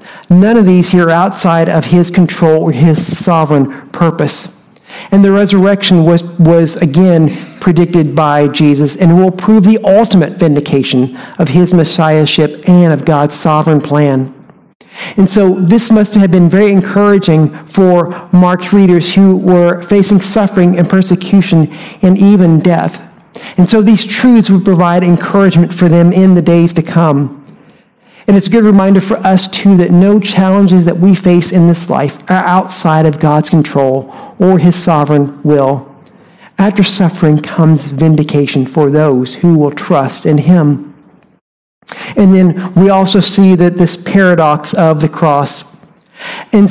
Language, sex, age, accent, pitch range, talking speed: English, male, 50-69, American, 160-195 Hz, 155 wpm